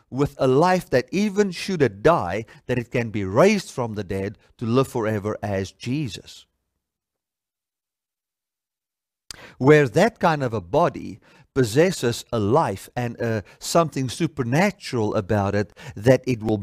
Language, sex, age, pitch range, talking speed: English, male, 50-69, 110-170 Hz, 140 wpm